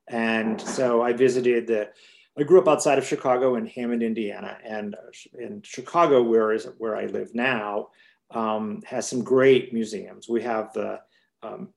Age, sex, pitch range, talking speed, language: 40-59, male, 115-135 Hz, 170 wpm, English